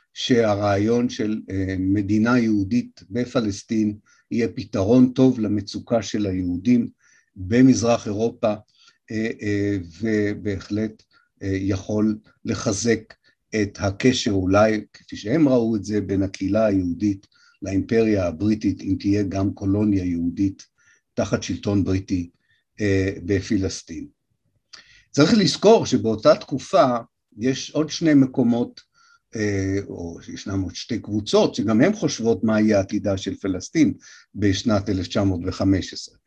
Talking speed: 100 wpm